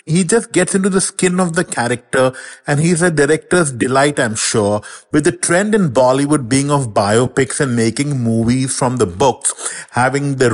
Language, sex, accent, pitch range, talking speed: English, male, Indian, 125-165 Hz, 180 wpm